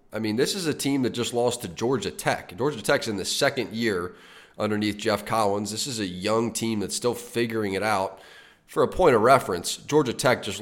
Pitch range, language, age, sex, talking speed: 95-115 Hz, English, 30-49, male, 220 wpm